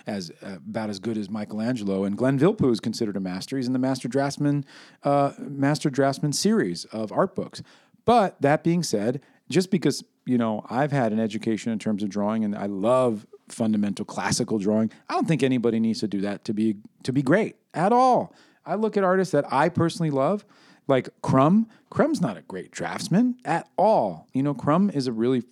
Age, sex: 40-59, male